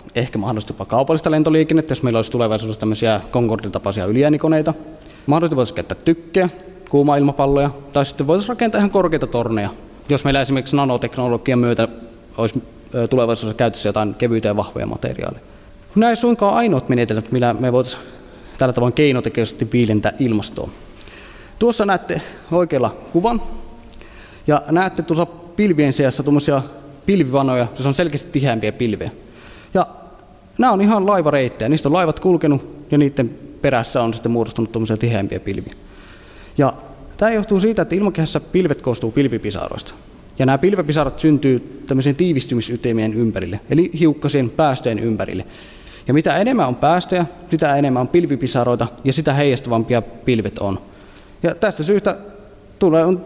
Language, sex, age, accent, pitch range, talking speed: Finnish, male, 20-39, native, 115-160 Hz, 135 wpm